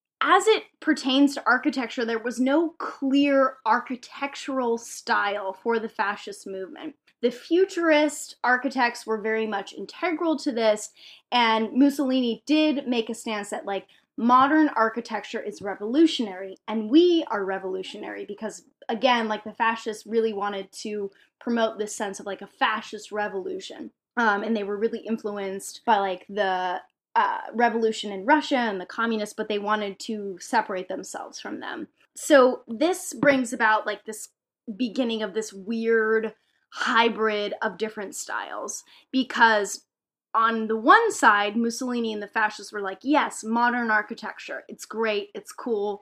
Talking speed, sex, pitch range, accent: 145 wpm, female, 210-265 Hz, American